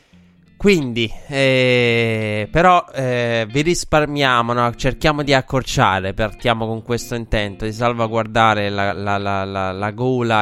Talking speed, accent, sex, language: 110 wpm, native, male, Italian